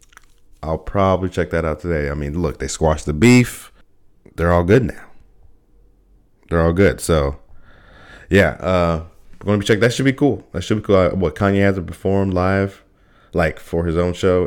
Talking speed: 190 wpm